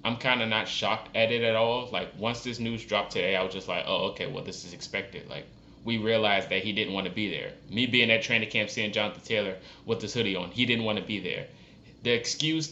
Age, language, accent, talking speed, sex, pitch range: 20-39, English, American, 260 wpm, male, 105-120 Hz